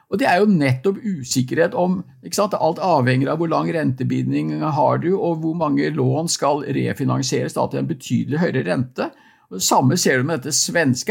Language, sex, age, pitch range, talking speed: English, male, 50-69, 130-180 Hz, 190 wpm